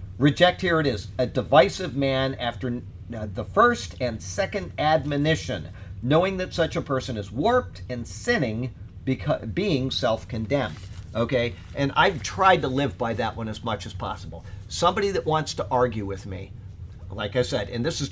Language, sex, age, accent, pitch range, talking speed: English, male, 50-69, American, 105-135 Hz, 170 wpm